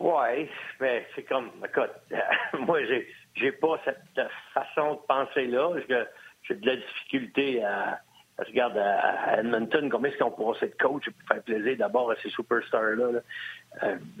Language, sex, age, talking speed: French, male, 60-79, 165 wpm